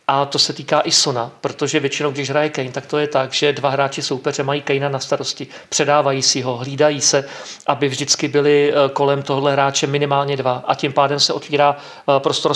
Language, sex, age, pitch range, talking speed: Czech, male, 40-59, 140-160 Hz, 200 wpm